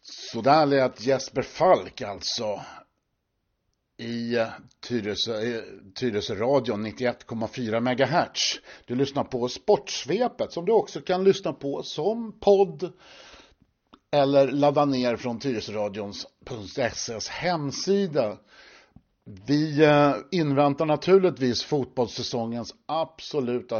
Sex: male